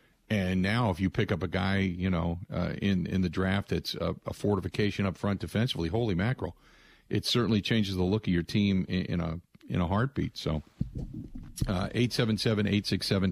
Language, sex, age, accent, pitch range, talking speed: English, male, 50-69, American, 90-110 Hz, 180 wpm